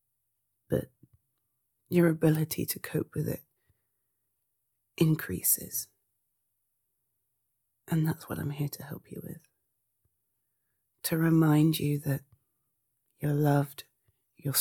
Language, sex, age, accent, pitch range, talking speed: English, female, 30-49, British, 120-165 Hz, 100 wpm